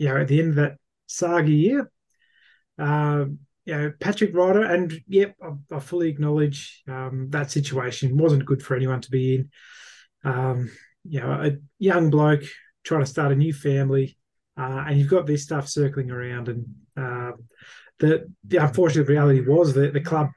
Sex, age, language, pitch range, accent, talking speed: male, 20-39, English, 130-160 Hz, Australian, 180 wpm